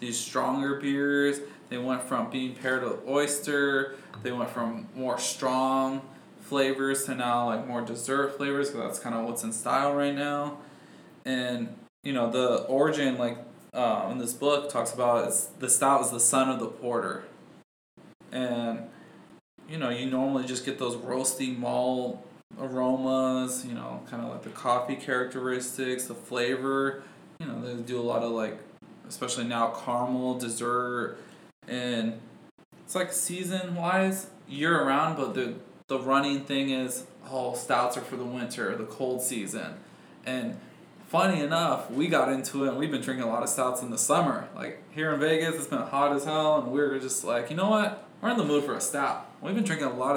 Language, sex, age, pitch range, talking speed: English, male, 20-39, 125-140 Hz, 180 wpm